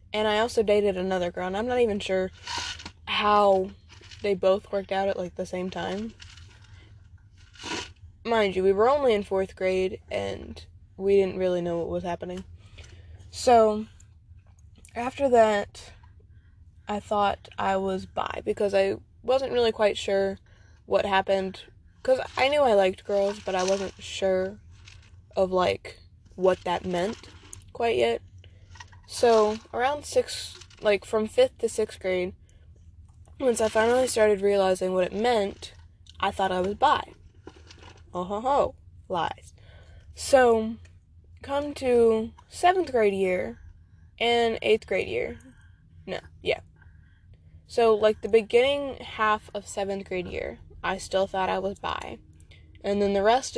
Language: English